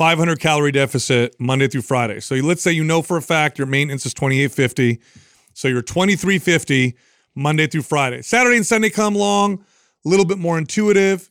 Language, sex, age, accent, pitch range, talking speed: English, male, 30-49, American, 140-185 Hz, 180 wpm